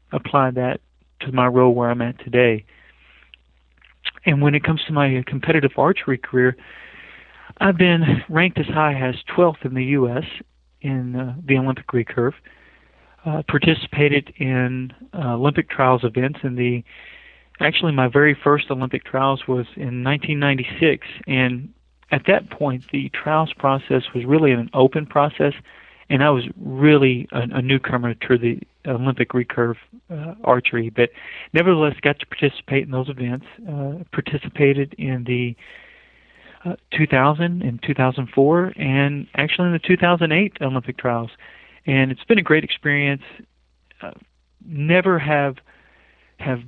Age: 40-59